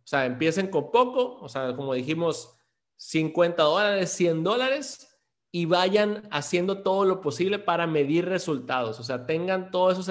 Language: Spanish